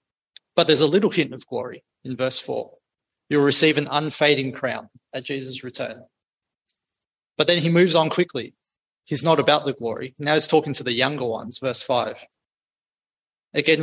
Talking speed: 170 wpm